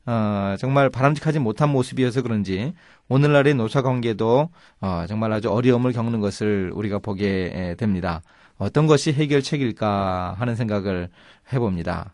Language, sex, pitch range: Korean, male, 105-140 Hz